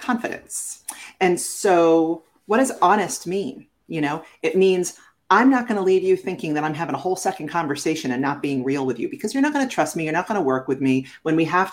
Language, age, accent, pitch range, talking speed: English, 40-59, American, 140-205 Hz, 245 wpm